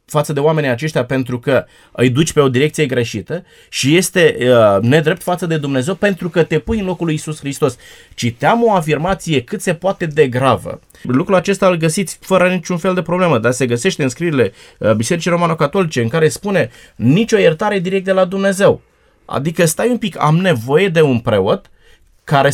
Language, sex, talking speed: Romanian, male, 185 wpm